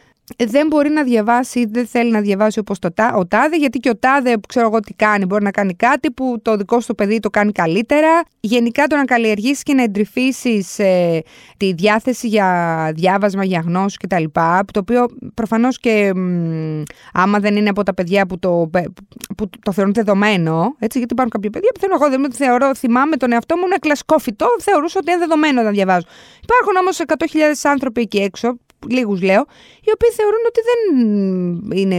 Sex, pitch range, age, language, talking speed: female, 195-290 Hz, 20-39, Greek, 190 wpm